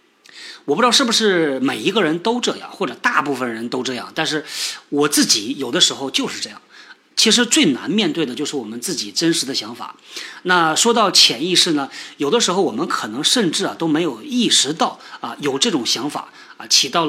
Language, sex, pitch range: Chinese, male, 150-225 Hz